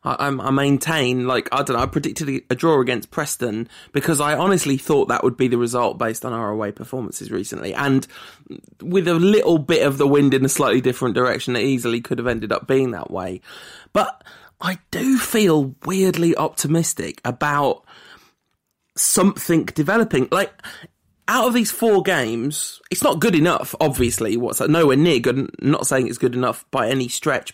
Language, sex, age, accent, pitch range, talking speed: English, male, 20-39, British, 125-165 Hz, 180 wpm